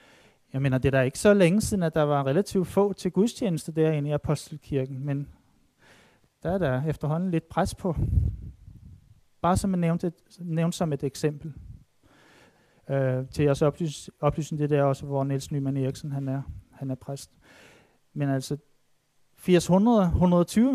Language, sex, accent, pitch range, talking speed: Danish, male, native, 145-180 Hz, 160 wpm